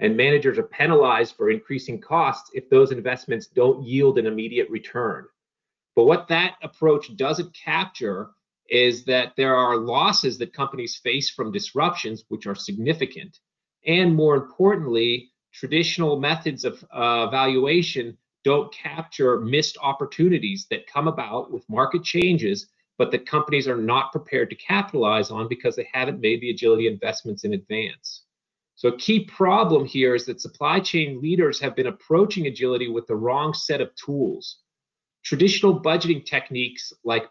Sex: male